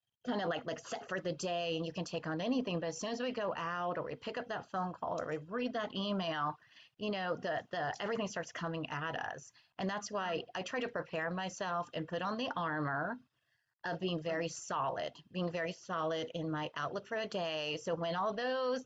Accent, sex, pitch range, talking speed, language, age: American, female, 160-215 Hz, 230 wpm, English, 30-49